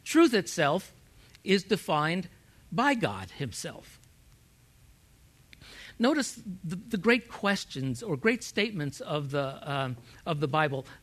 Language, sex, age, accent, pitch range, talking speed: English, male, 60-79, American, 140-200 Hz, 115 wpm